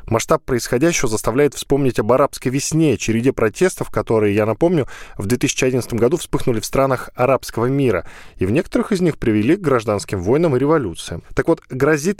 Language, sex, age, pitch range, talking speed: Russian, male, 10-29, 110-150 Hz, 165 wpm